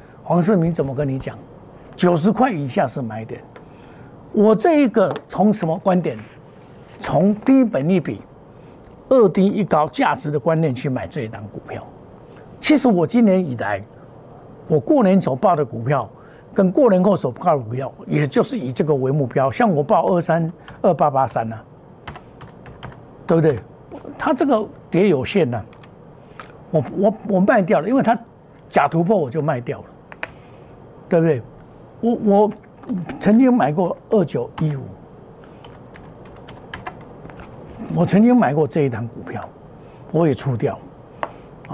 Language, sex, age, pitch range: Chinese, male, 60-79, 140-205 Hz